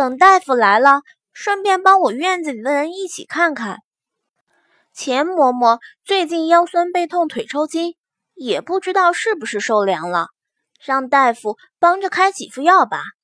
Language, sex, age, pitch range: Chinese, female, 20-39, 265-385 Hz